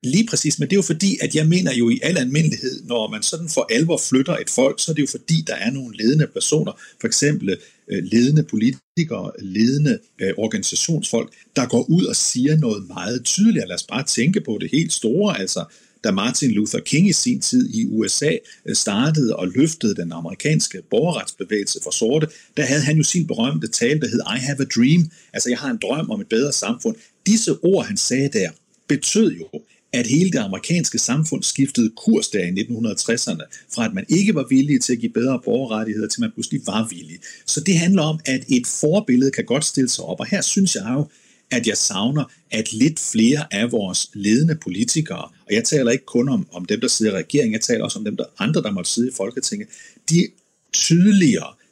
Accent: native